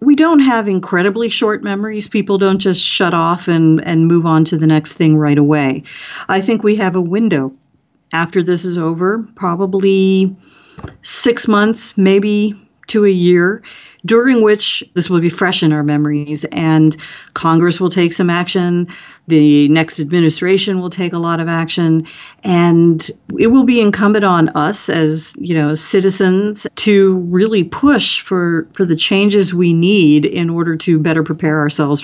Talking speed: 165 wpm